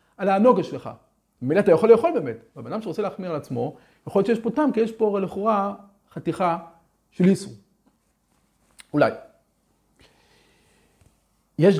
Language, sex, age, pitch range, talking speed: Hebrew, male, 40-59, 145-200 Hz, 140 wpm